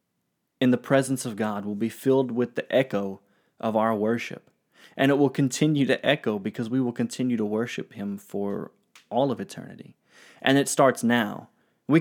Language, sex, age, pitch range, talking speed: English, male, 20-39, 115-135 Hz, 180 wpm